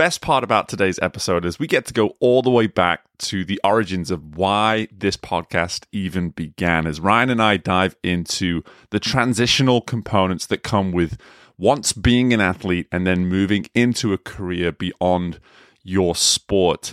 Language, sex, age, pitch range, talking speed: English, male, 30-49, 90-120 Hz, 170 wpm